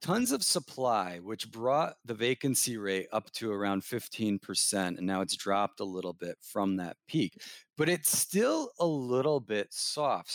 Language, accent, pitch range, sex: English, American, 110-150 Hz, male